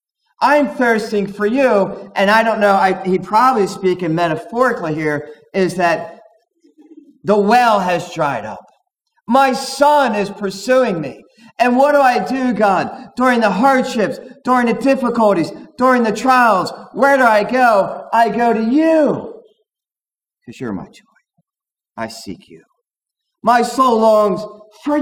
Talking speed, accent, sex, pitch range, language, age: 140 wpm, American, male, 195-260 Hz, English, 40-59